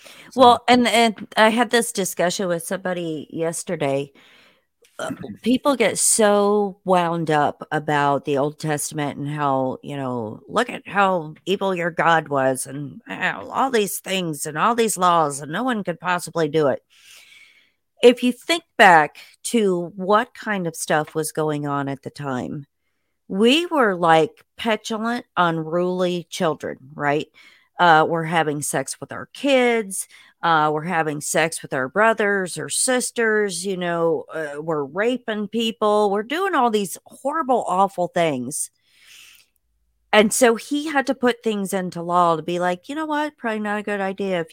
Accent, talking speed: American, 160 wpm